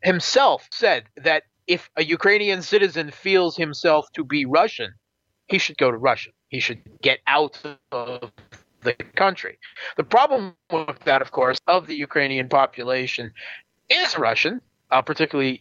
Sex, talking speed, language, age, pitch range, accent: male, 145 wpm, English, 40-59, 120-160 Hz, American